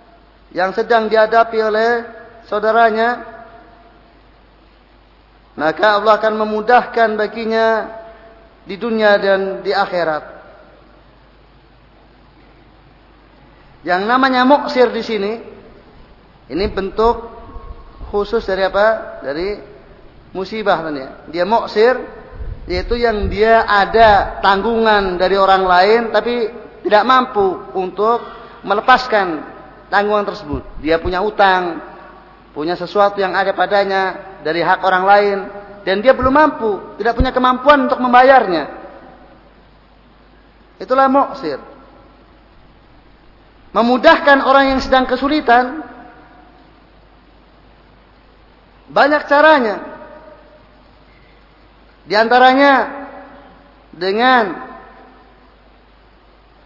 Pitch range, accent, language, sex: 195-250 Hz, native, Indonesian, male